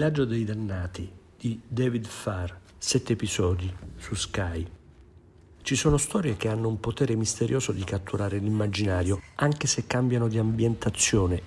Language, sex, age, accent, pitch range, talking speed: Italian, male, 50-69, native, 100-130 Hz, 140 wpm